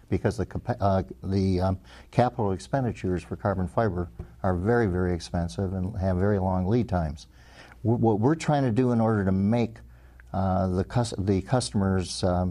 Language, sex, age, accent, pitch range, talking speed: English, male, 60-79, American, 90-110 Hz, 170 wpm